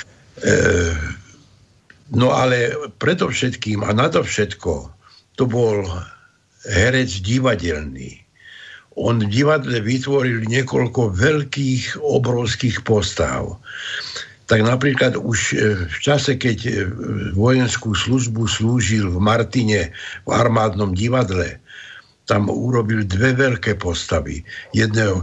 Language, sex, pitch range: Slovak, male, 105-125 Hz